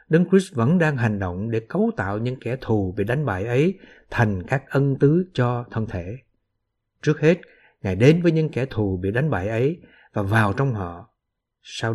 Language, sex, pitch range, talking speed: Vietnamese, male, 100-145 Hz, 200 wpm